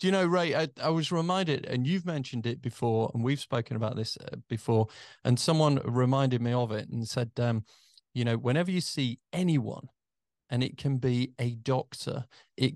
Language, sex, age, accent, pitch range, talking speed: English, male, 40-59, British, 120-145 Hz, 200 wpm